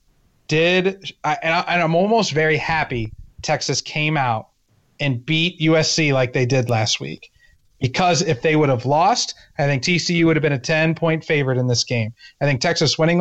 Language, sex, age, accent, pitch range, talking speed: English, male, 30-49, American, 135-175 Hz, 180 wpm